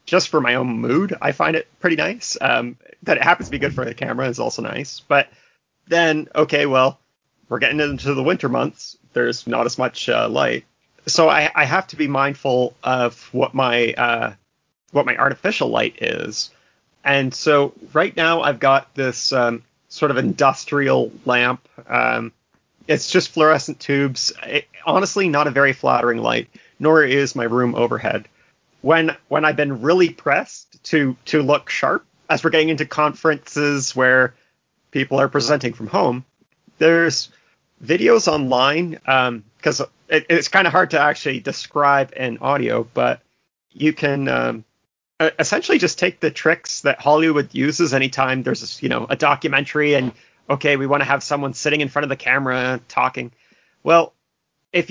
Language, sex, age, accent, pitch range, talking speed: English, male, 30-49, American, 130-155 Hz, 170 wpm